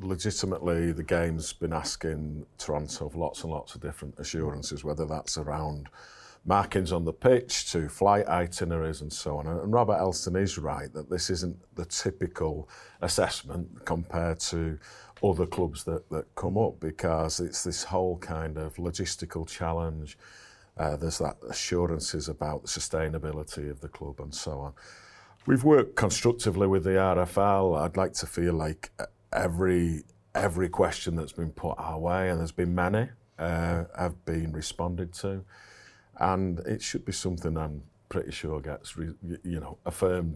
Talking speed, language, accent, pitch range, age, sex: 160 wpm, English, British, 80-95 Hz, 50-69, male